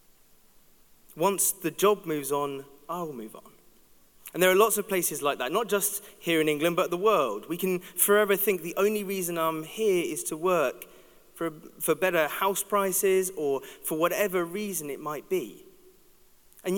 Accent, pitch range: British, 165-210 Hz